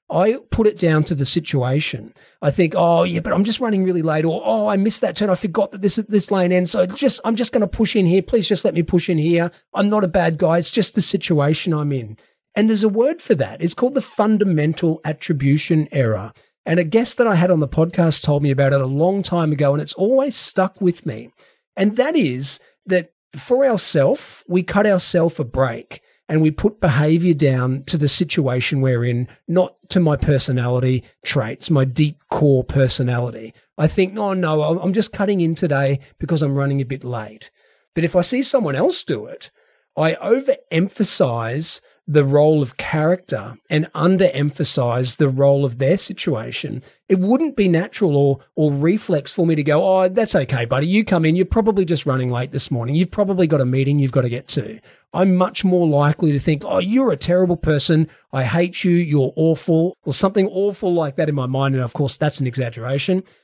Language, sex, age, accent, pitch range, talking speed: English, male, 40-59, Australian, 140-190 Hz, 210 wpm